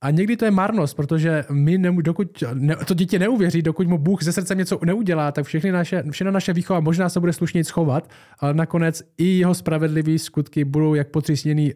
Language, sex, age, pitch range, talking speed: Czech, male, 20-39, 135-160 Hz, 200 wpm